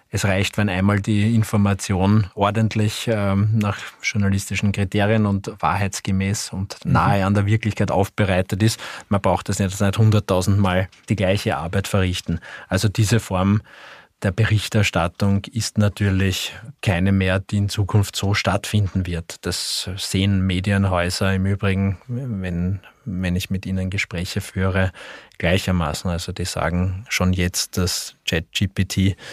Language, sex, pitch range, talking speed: German, male, 95-105 Hz, 135 wpm